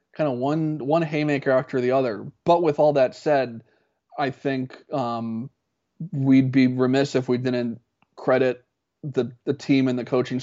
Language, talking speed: English, 165 wpm